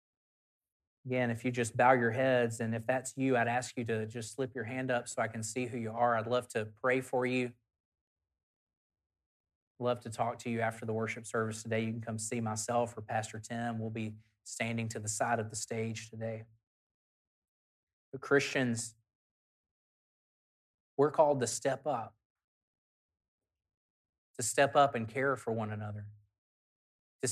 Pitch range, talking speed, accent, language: 105-125 Hz, 170 wpm, American, English